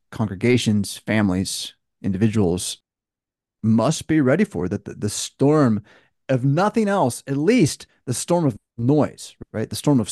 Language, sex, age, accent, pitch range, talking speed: English, male, 30-49, American, 105-140 Hz, 140 wpm